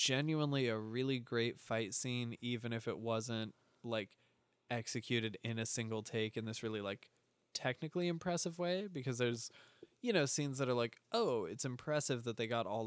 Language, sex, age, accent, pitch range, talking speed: English, male, 20-39, American, 115-125 Hz, 175 wpm